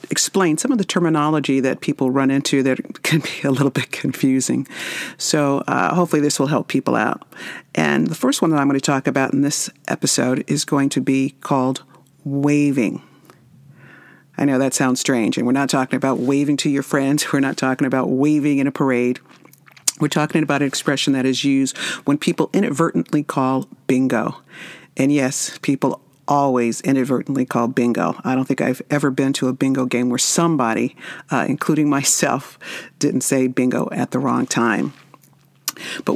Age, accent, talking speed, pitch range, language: 50-69, American, 180 wpm, 130-150 Hz, English